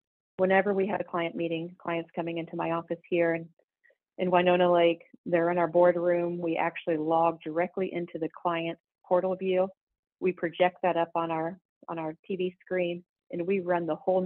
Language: English